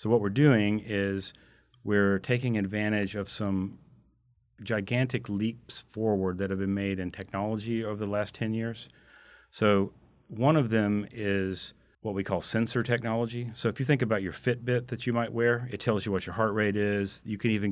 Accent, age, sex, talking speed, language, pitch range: American, 40-59, male, 190 wpm, English, 95-110 Hz